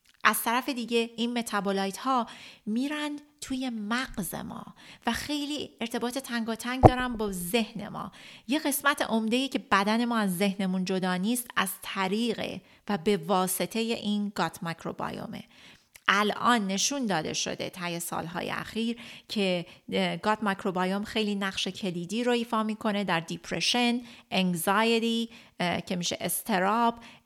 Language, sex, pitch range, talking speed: Persian, female, 185-235 Hz, 135 wpm